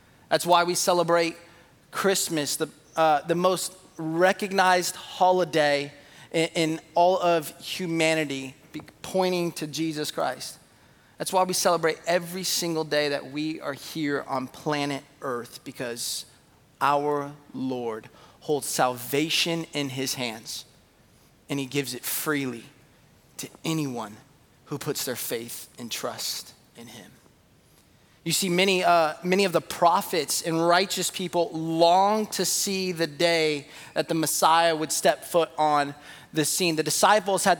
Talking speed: 135 wpm